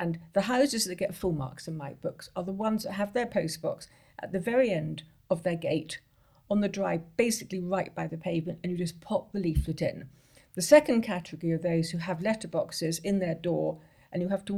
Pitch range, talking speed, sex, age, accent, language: 160-190 Hz, 225 wpm, female, 50-69, British, English